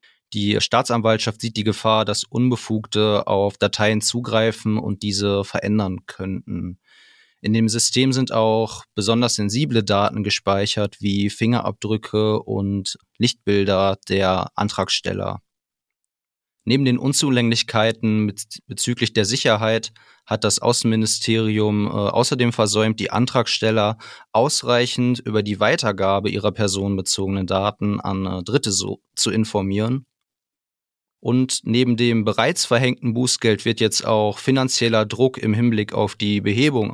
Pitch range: 105-120 Hz